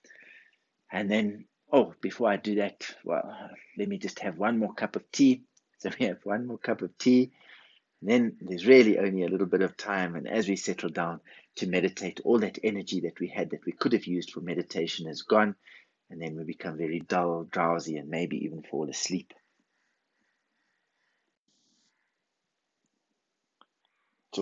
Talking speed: 170 wpm